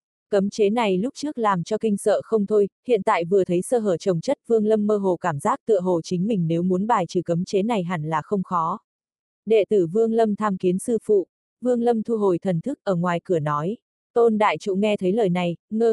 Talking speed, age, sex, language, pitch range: 250 wpm, 20-39, female, Vietnamese, 180-220 Hz